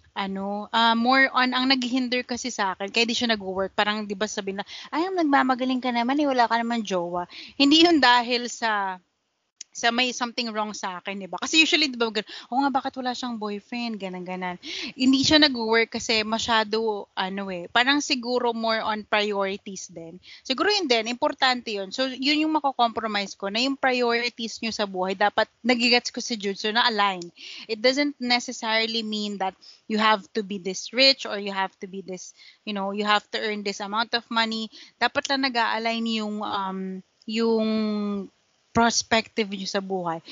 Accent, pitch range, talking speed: native, 205-250 Hz, 185 wpm